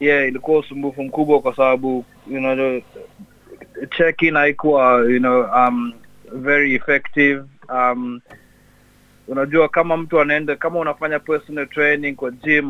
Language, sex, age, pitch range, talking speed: Swahili, male, 30-49, 125-145 Hz, 125 wpm